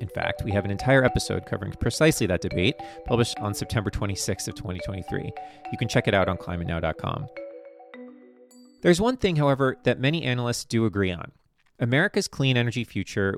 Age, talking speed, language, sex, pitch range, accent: 30-49, 170 wpm, English, male, 95-135 Hz, American